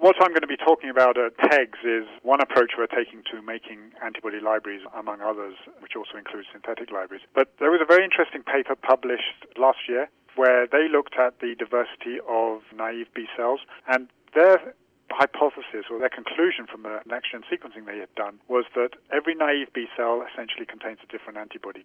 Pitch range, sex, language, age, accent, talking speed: 110-135 Hz, male, English, 40-59, British, 190 wpm